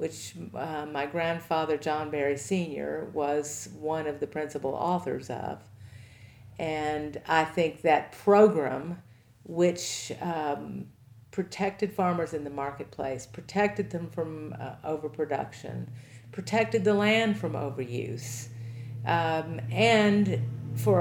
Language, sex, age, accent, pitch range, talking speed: English, female, 50-69, American, 125-175 Hz, 110 wpm